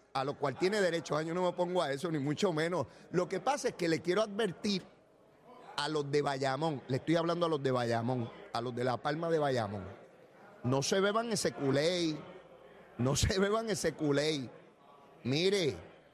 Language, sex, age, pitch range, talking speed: Spanish, male, 30-49, 160-240 Hz, 190 wpm